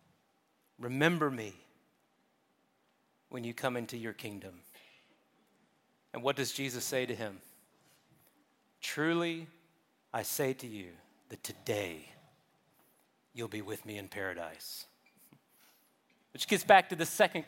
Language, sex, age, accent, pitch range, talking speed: English, male, 40-59, American, 135-190 Hz, 115 wpm